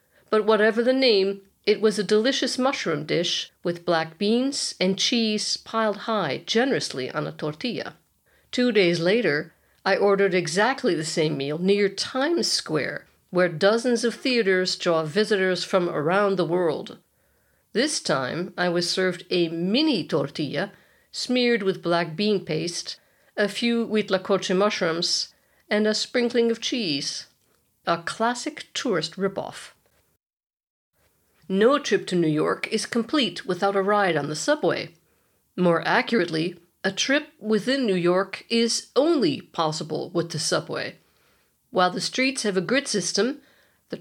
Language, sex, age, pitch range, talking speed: English, female, 50-69, 175-230 Hz, 140 wpm